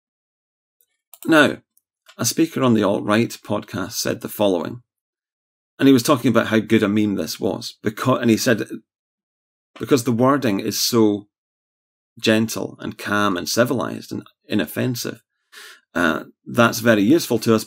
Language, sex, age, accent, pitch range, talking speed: English, male, 30-49, British, 110-130 Hz, 145 wpm